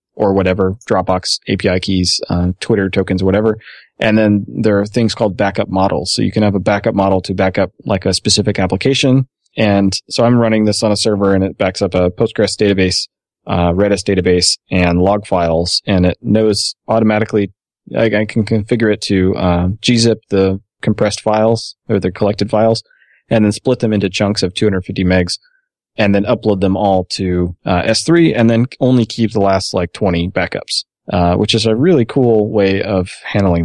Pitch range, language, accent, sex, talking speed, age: 95-110 Hz, English, American, male, 185 wpm, 20-39